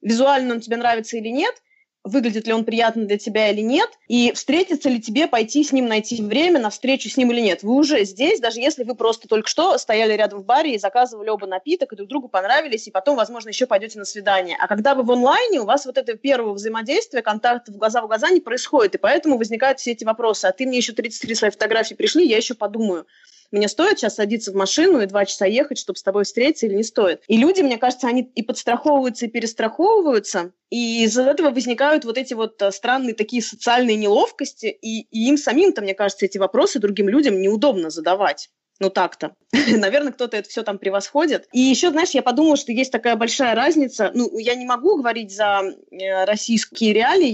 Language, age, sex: Russian, 20-39, female